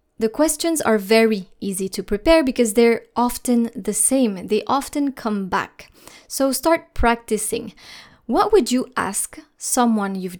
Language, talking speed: English, 145 wpm